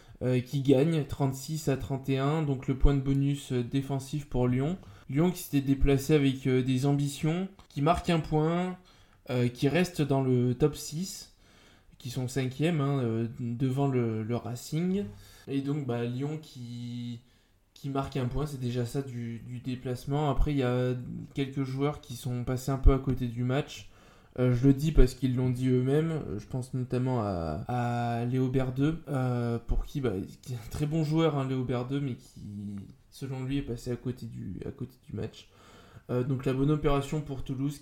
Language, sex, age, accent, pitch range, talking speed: French, male, 20-39, French, 120-140 Hz, 190 wpm